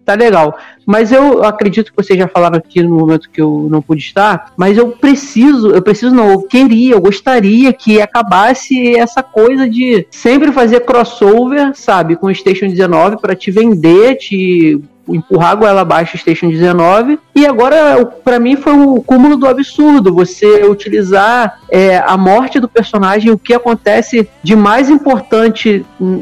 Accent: Brazilian